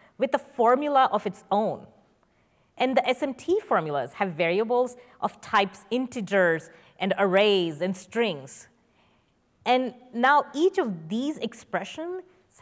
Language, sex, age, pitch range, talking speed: English, female, 20-39, 180-245 Hz, 120 wpm